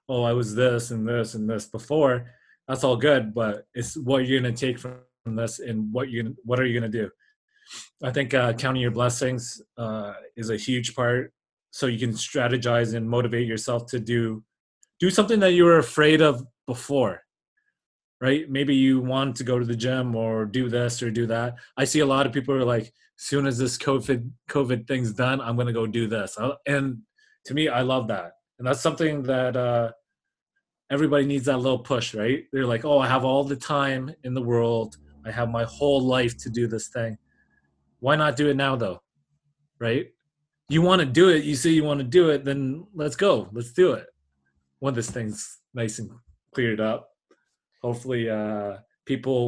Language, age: English, 30-49